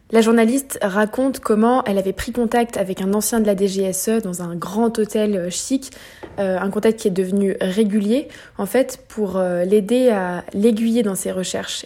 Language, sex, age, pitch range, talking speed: French, female, 20-39, 190-225 Hz, 180 wpm